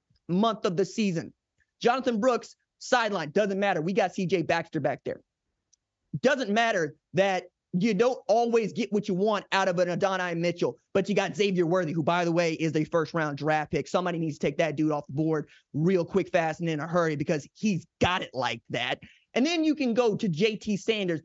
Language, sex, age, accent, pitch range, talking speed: English, male, 20-39, American, 175-235 Hz, 210 wpm